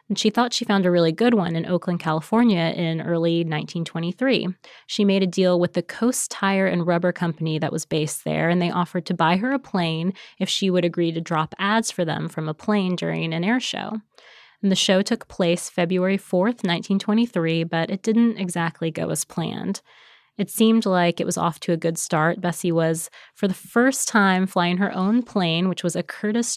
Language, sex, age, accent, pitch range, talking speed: English, female, 20-39, American, 170-200 Hz, 210 wpm